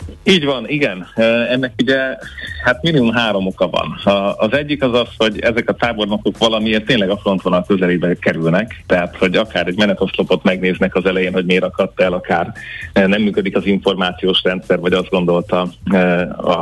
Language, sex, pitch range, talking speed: Hungarian, male, 90-105 Hz, 170 wpm